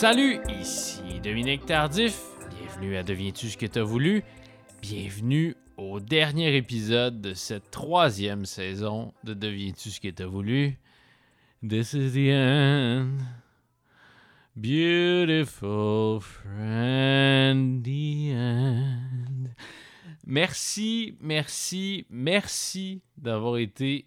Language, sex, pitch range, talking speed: French, male, 110-140 Hz, 95 wpm